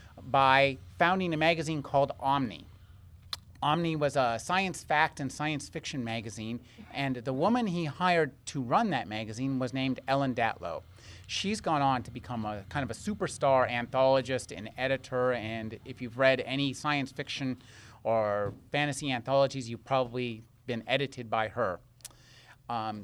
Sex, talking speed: male, 150 wpm